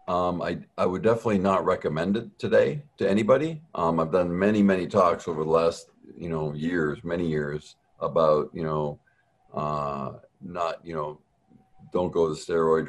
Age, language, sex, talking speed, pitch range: 50-69, English, male, 170 wpm, 80-105 Hz